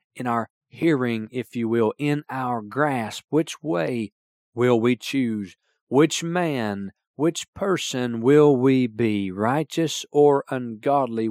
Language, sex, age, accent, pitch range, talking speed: English, male, 40-59, American, 110-145 Hz, 125 wpm